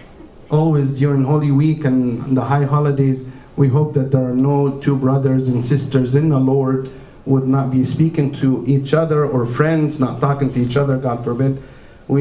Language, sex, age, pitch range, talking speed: English, male, 50-69, 130-155 Hz, 185 wpm